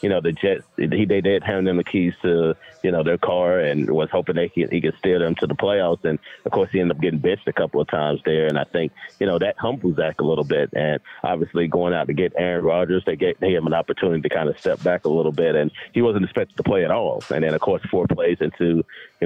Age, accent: 30-49, American